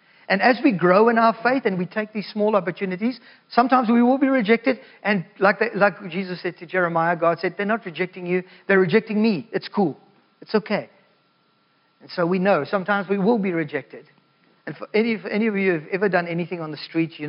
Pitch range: 150-190 Hz